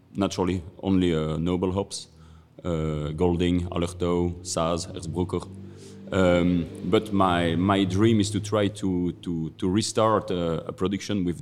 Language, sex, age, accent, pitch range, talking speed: English, male, 40-59, French, 85-100 Hz, 135 wpm